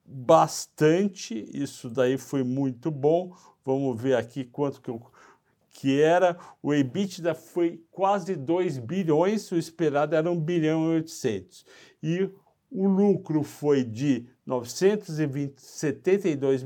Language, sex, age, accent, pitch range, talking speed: Portuguese, male, 60-79, Brazilian, 130-170 Hz, 120 wpm